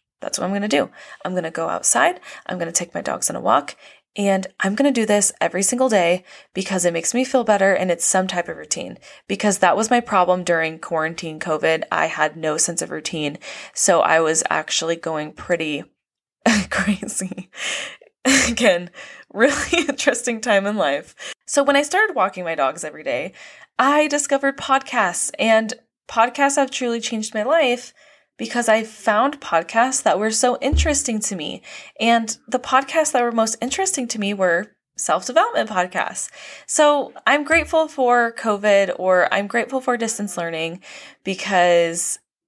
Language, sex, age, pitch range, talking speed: English, female, 20-39, 185-280 Hz, 170 wpm